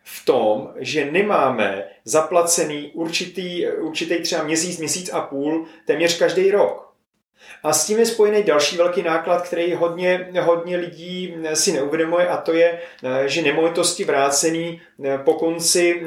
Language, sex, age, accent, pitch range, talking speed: Czech, male, 30-49, native, 145-180 Hz, 140 wpm